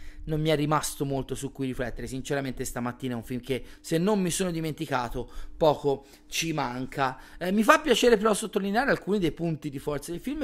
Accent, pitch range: native, 135-175 Hz